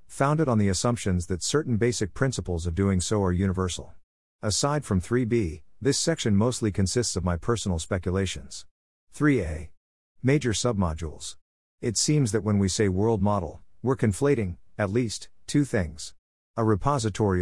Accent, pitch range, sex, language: American, 90-115 Hz, male, English